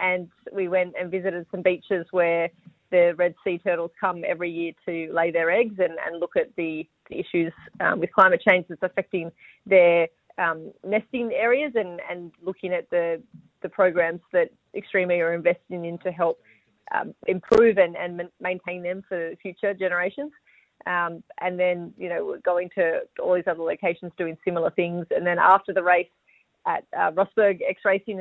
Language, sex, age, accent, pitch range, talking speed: English, female, 30-49, Australian, 175-195 Hz, 175 wpm